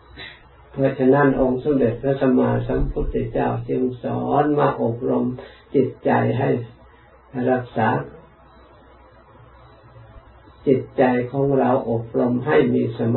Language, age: Thai, 50-69